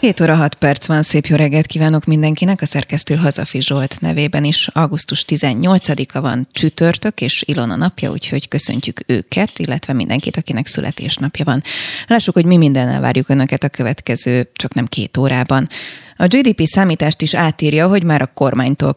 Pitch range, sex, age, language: 135-165 Hz, female, 20-39, Hungarian